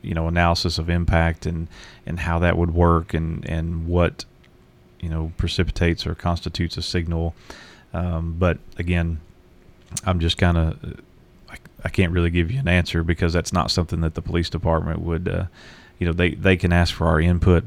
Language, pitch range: English, 80-90 Hz